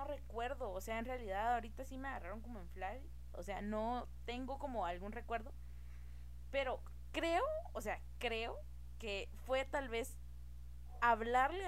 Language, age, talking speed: Spanish, 20-39, 150 wpm